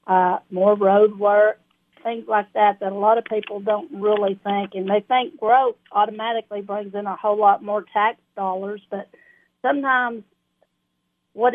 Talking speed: 160 wpm